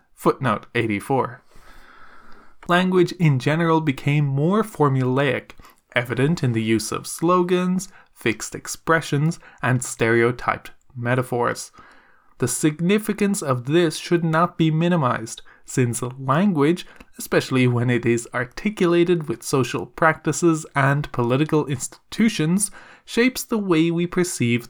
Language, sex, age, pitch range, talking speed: English, male, 20-39, 125-170 Hz, 110 wpm